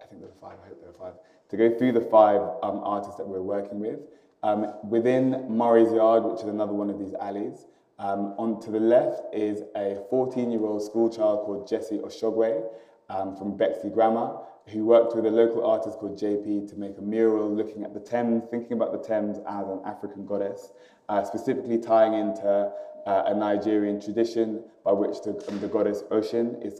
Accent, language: British, English